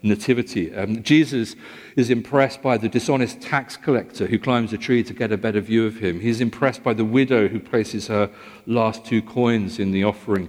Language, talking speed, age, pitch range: English, 200 wpm, 50-69, 90-115 Hz